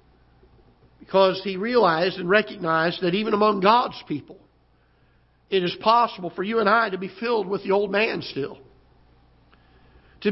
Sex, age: male, 60-79